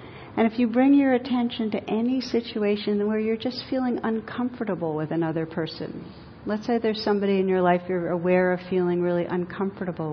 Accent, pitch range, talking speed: American, 165-215 Hz, 180 wpm